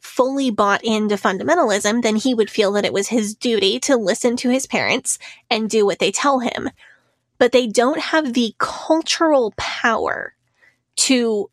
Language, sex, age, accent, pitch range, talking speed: English, female, 20-39, American, 215-265 Hz, 165 wpm